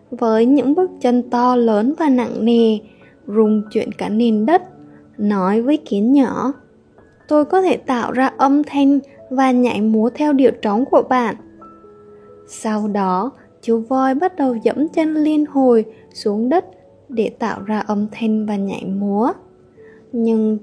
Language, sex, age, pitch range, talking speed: Vietnamese, female, 20-39, 215-270 Hz, 155 wpm